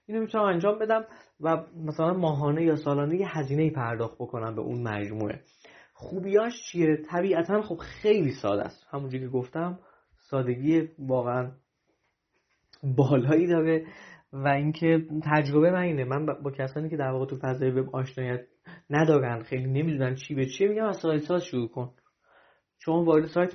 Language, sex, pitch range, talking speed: Persian, male, 130-165 Hz, 155 wpm